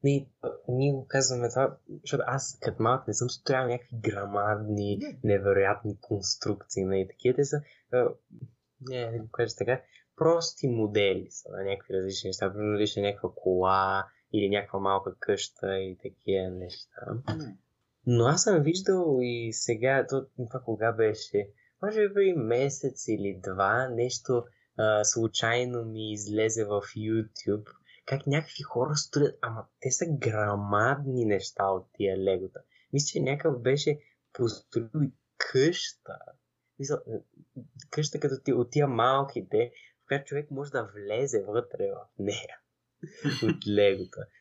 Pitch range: 105-145 Hz